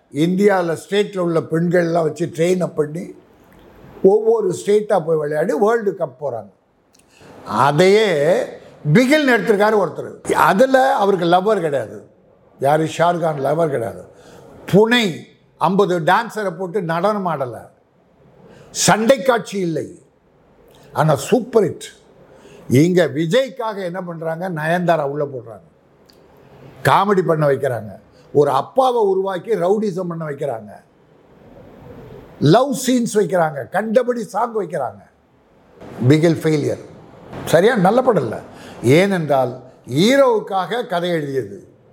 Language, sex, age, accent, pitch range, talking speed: Tamil, male, 50-69, native, 165-235 Hz, 100 wpm